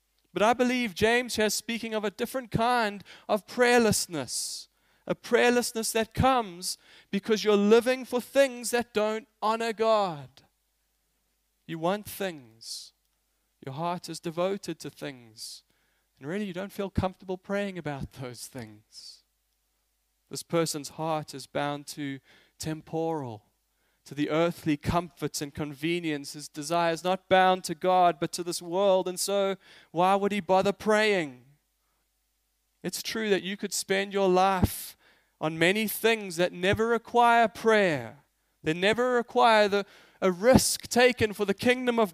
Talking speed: 140 wpm